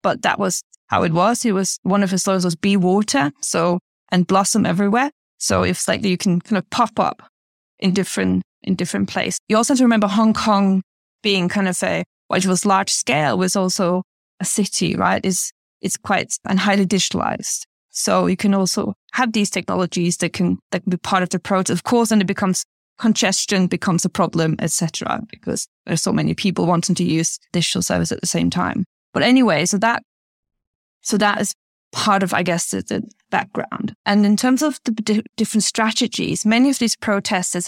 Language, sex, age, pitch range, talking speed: English, female, 20-39, 185-215 Hz, 205 wpm